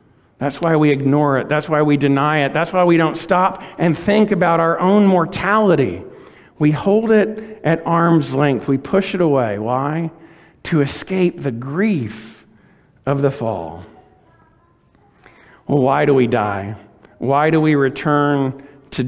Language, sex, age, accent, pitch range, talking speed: English, male, 50-69, American, 150-200 Hz, 155 wpm